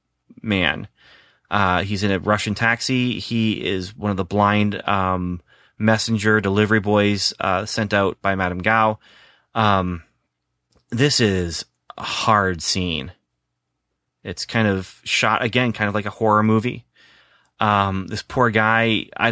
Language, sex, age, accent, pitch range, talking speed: English, male, 30-49, American, 95-115 Hz, 140 wpm